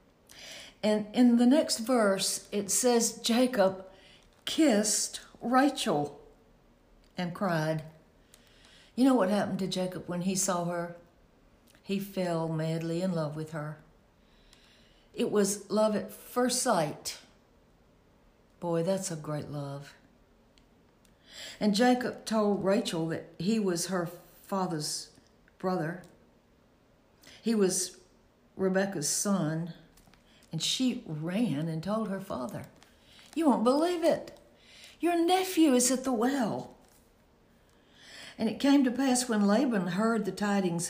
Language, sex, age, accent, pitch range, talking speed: English, female, 60-79, American, 170-220 Hz, 120 wpm